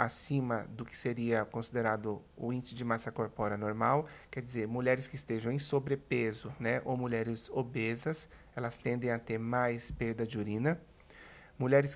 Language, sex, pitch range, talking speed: Portuguese, male, 115-150 Hz, 155 wpm